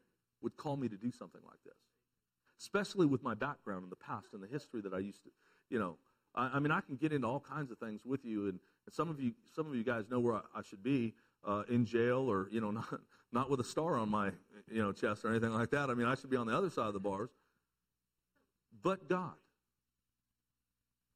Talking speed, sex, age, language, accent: 245 wpm, male, 50-69, English, American